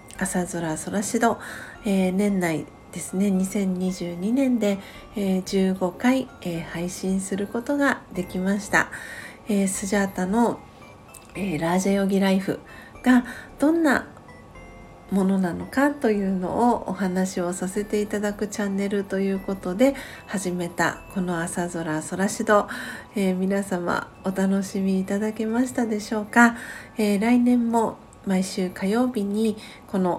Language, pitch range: Japanese, 180-215 Hz